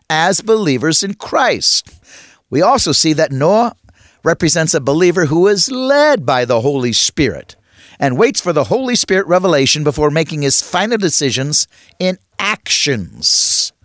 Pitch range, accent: 135-185 Hz, American